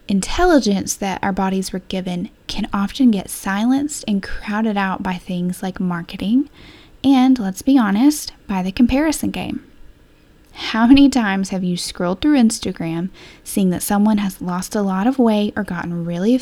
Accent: American